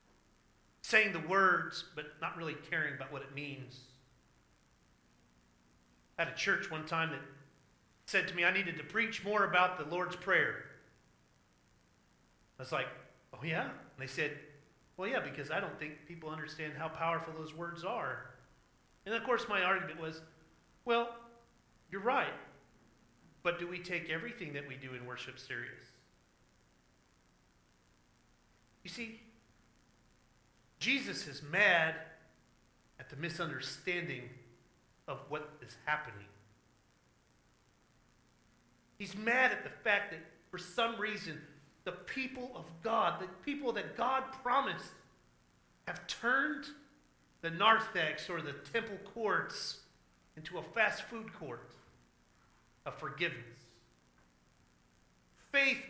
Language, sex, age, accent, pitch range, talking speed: English, male, 40-59, American, 125-195 Hz, 125 wpm